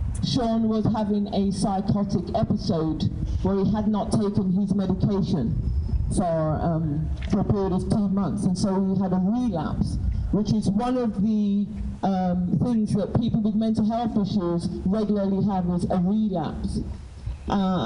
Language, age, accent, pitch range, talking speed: English, 50-69, British, 180-215 Hz, 155 wpm